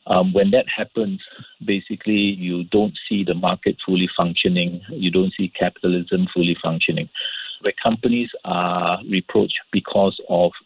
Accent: Malaysian